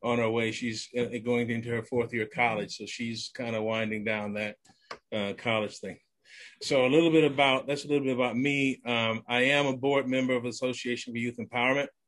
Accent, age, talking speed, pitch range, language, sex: American, 30-49, 215 wpm, 120-135 Hz, English, male